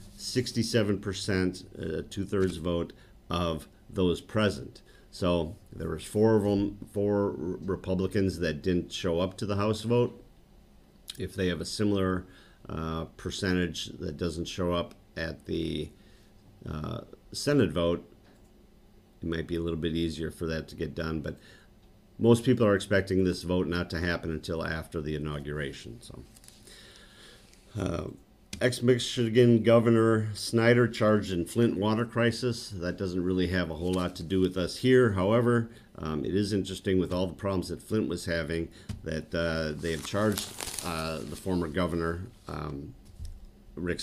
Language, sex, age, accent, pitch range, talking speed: English, male, 50-69, American, 85-100 Hz, 150 wpm